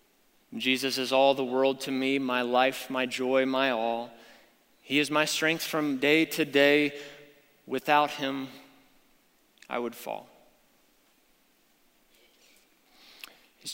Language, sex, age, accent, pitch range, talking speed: English, male, 20-39, American, 125-150 Hz, 120 wpm